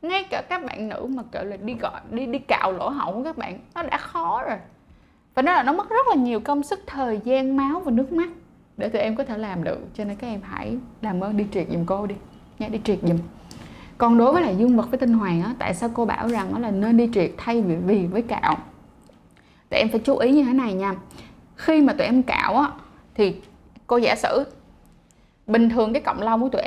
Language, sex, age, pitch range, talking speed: Vietnamese, female, 10-29, 215-275 Hz, 245 wpm